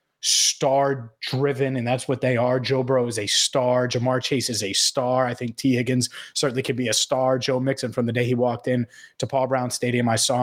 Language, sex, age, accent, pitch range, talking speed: English, male, 30-49, American, 120-145 Hz, 230 wpm